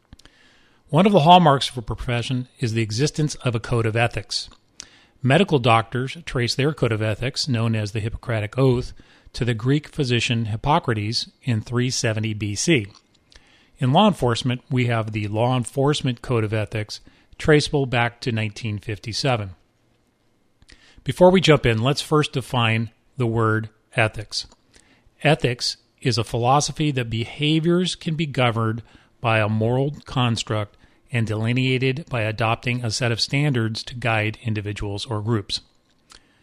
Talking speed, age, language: 145 wpm, 40-59, English